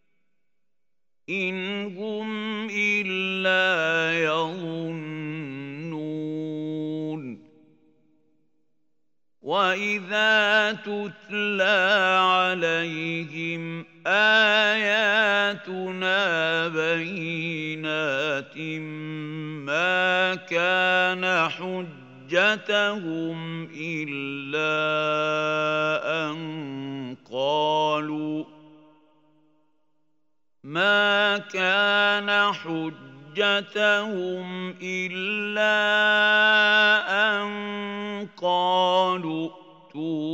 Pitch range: 155-185 Hz